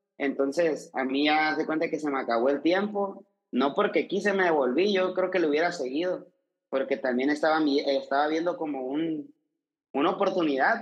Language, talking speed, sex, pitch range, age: Spanish, 175 wpm, male, 140-185 Hz, 30-49